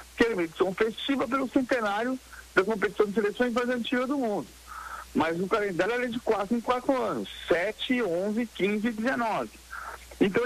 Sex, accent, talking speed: male, Brazilian, 165 wpm